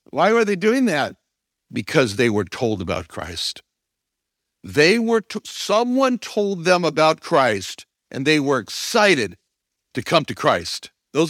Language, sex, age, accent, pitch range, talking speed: English, male, 60-79, American, 160-230 Hz, 145 wpm